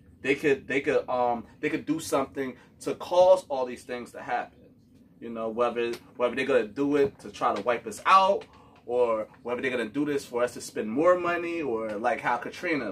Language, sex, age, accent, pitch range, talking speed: English, male, 20-39, American, 125-155 Hz, 215 wpm